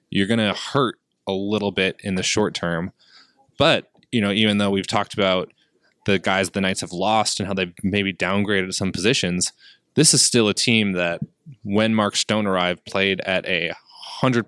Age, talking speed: 20-39, 185 wpm